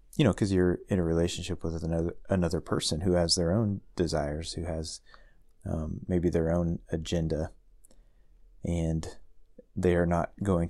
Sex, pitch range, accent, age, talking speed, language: male, 80-90 Hz, American, 30-49, 155 wpm, English